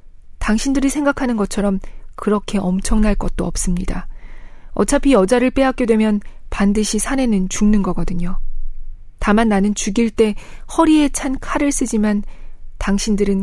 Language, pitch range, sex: Korean, 190-230 Hz, female